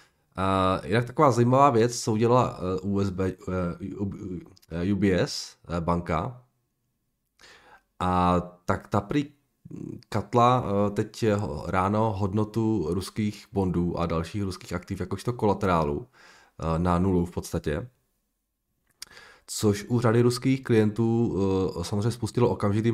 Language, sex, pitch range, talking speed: Czech, male, 85-110 Hz, 115 wpm